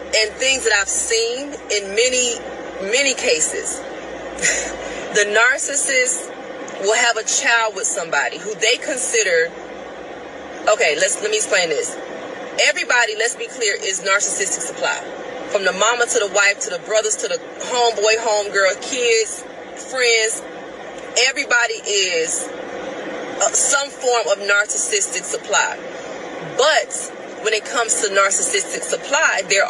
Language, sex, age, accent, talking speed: English, female, 30-49, American, 125 wpm